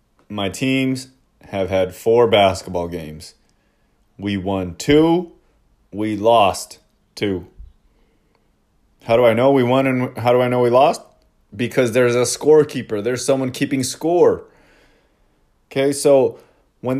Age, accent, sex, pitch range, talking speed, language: 30-49, American, male, 100-130 Hz, 130 wpm, English